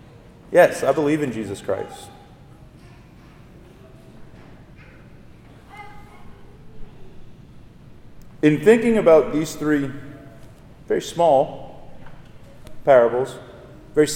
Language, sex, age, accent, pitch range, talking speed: English, male, 40-59, American, 125-155 Hz, 65 wpm